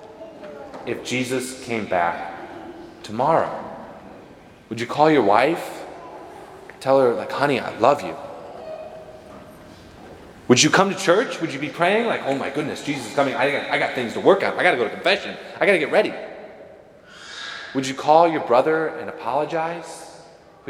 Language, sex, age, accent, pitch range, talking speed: English, male, 20-39, American, 130-195 Hz, 165 wpm